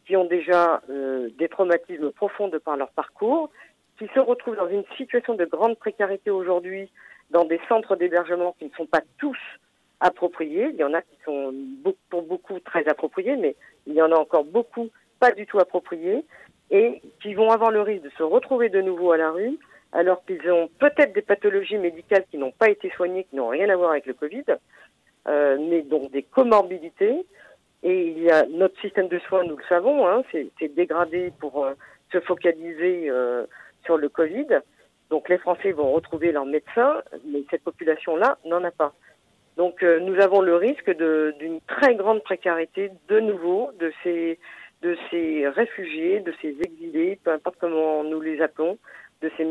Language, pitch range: French, 160-210 Hz